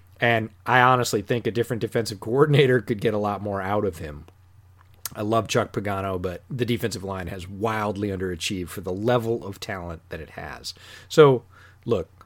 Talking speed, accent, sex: 180 wpm, American, male